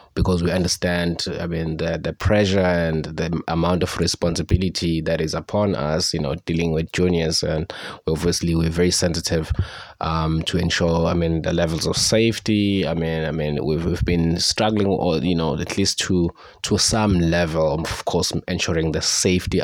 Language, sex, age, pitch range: English, male, 20-39, 80-95 Hz